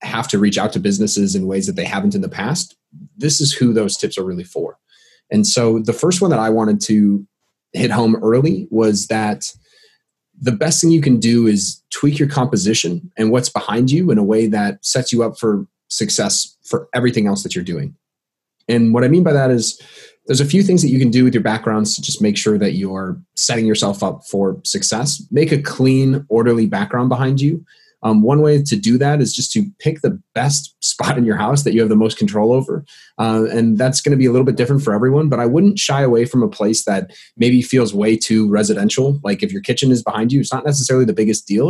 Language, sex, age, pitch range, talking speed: English, male, 30-49, 110-145 Hz, 235 wpm